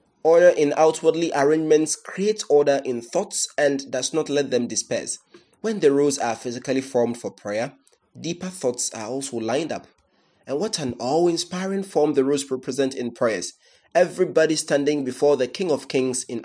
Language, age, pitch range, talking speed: English, 30-49, 125-165 Hz, 170 wpm